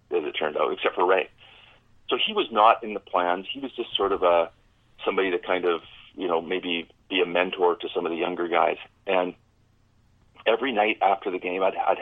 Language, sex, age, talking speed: English, male, 40-59, 220 wpm